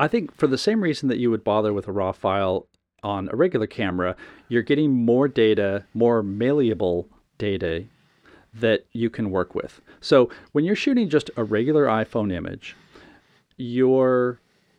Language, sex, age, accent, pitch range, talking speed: English, male, 40-59, American, 100-135 Hz, 160 wpm